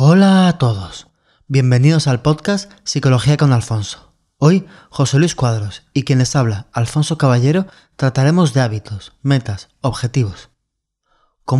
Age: 20-39